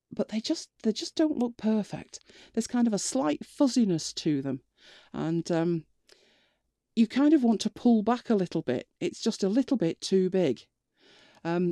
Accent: British